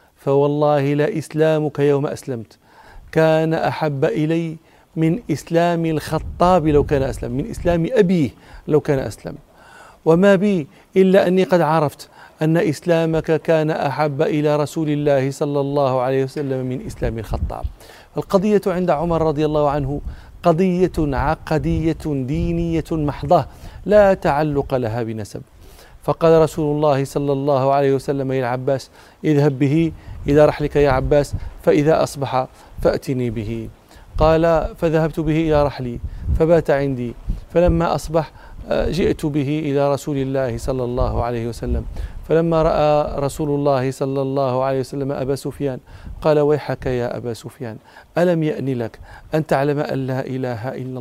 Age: 40-59